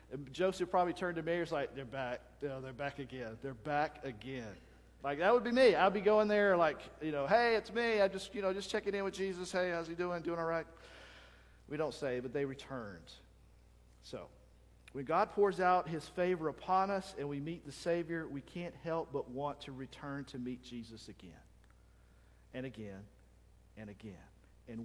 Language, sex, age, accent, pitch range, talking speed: English, male, 50-69, American, 130-185 Hz, 195 wpm